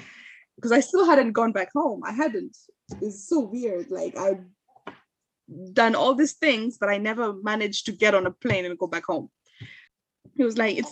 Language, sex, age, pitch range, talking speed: English, female, 20-39, 195-265 Hz, 200 wpm